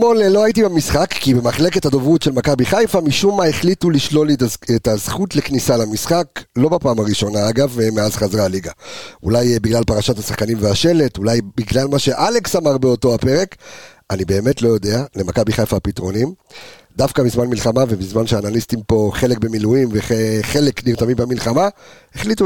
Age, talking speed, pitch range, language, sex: 50-69, 150 wpm, 110-155 Hz, Hebrew, male